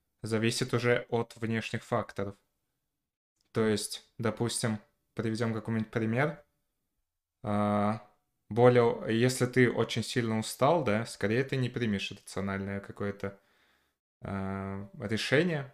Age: 20-39